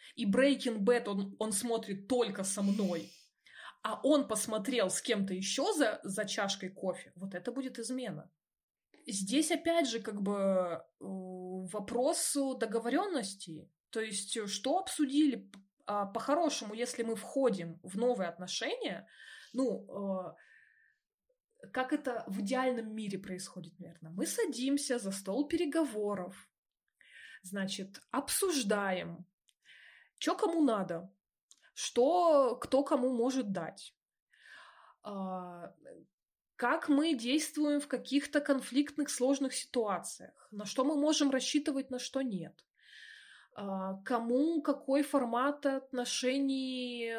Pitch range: 195-275 Hz